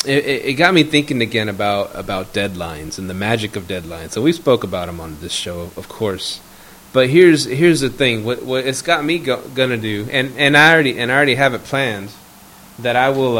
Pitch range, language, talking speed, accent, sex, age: 100-130 Hz, English, 230 wpm, American, male, 30-49